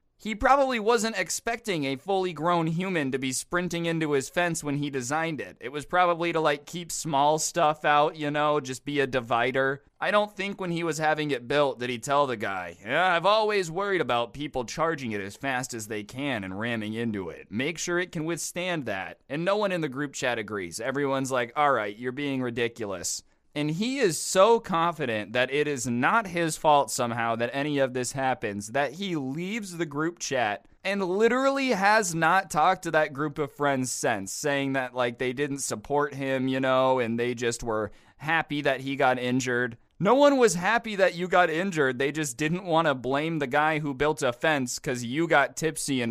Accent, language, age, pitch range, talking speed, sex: American, English, 20-39, 125-170 Hz, 210 wpm, male